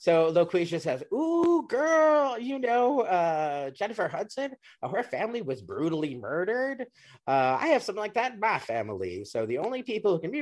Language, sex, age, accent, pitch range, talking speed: English, male, 30-49, American, 120-200 Hz, 185 wpm